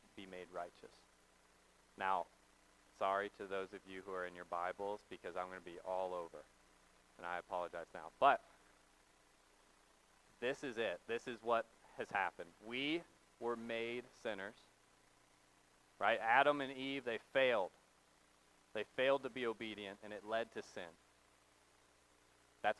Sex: male